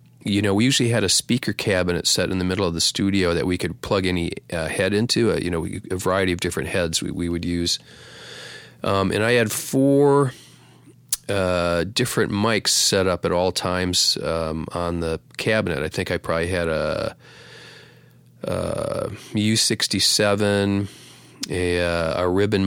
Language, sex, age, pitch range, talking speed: English, male, 40-59, 85-100 Hz, 165 wpm